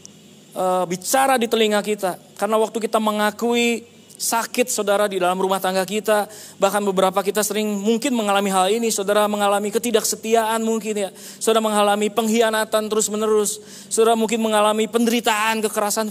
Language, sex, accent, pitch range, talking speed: Indonesian, male, native, 185-230 Hz, 140 wpm